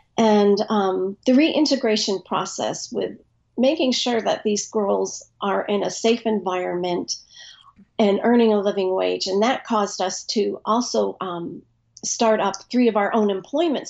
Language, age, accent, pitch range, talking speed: English, 50-69, American, 195-235 Hz, 150 wpm